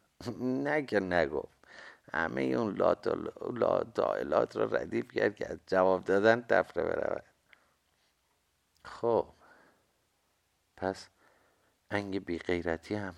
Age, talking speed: 50-69, 80 wpm